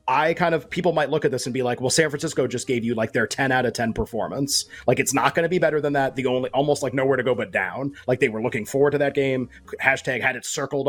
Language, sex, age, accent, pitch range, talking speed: English, male, 30-49, American, 115-140 Hz, 300 wpm